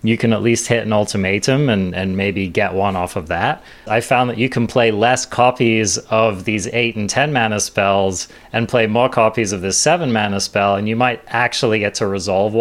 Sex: male